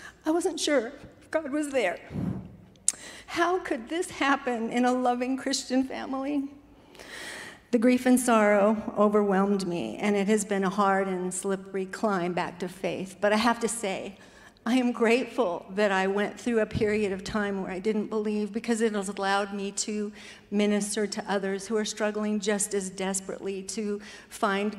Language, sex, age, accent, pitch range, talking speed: English, female, 50-69, American, 200-235 Hz, 170 wpm